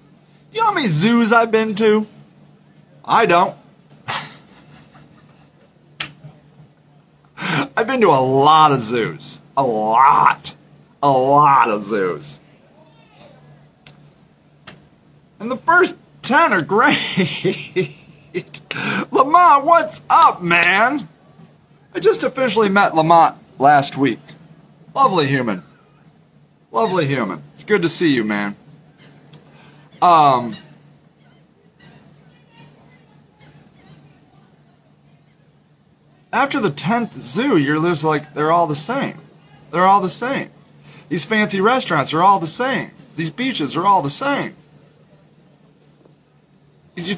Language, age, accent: English, 40-59, American